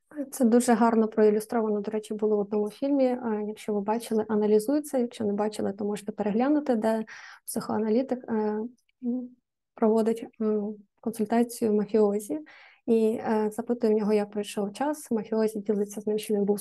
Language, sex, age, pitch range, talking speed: Ukrainian, female, 20-39, 215-245 Hz, 140 wpm